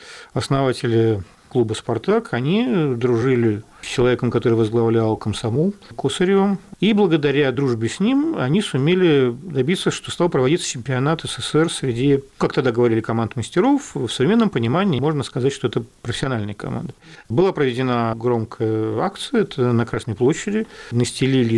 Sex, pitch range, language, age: male, 110-150 Hz, Russian, 50-69